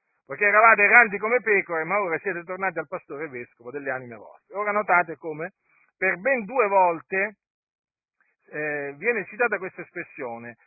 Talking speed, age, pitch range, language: 150 wpm, 50-69, 150-215 Hz, Italian